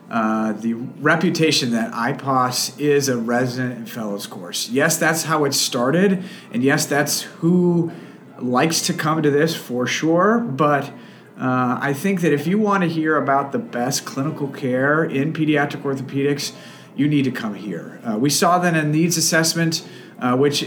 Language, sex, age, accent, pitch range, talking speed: English, male, 40-59, American, 130-165 Hz, 170 wpm